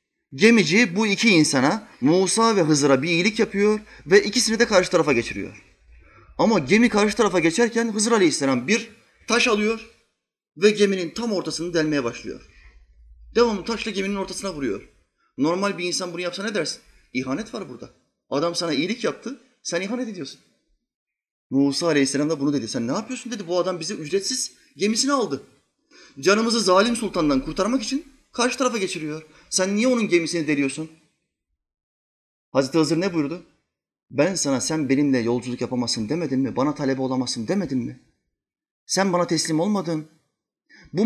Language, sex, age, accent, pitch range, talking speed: Turkish, male, 30-49, native, 140-215 Hz, 150 wpm